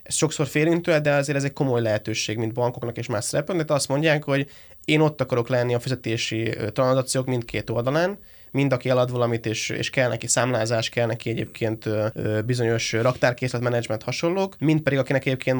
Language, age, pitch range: Hungarian, 20-39, 115-135 Hz